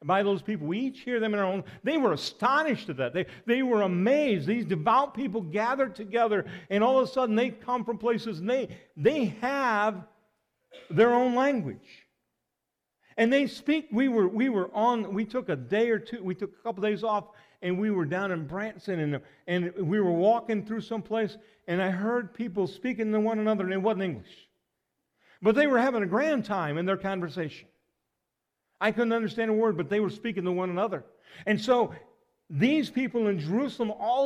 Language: English